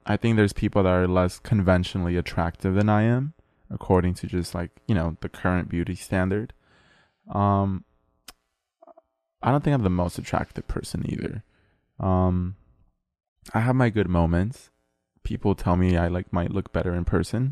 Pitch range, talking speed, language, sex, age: 85-105 Hz, 165 wpm, English, male, 20-39